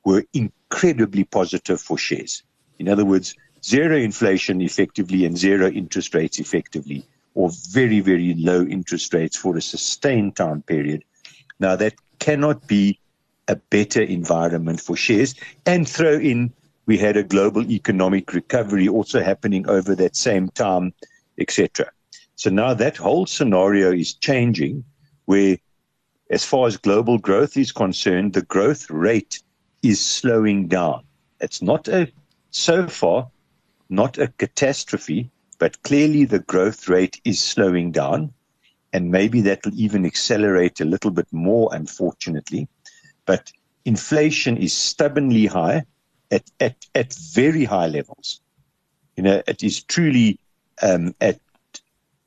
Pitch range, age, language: 95-130 Hz, 60-79, English